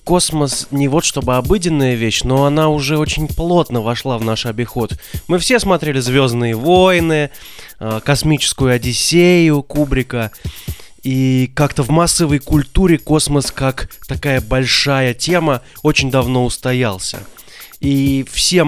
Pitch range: 120-150 Hz